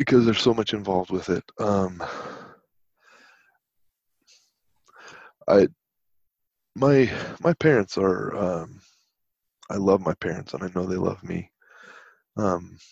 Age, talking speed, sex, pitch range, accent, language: 20-39, 115 wpm, male, 90-105 Hz, American, English